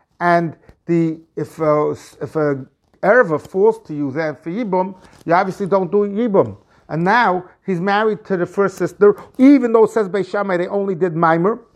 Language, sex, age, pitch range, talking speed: English, male, 50-69, 160-210 Hz, 170 wpm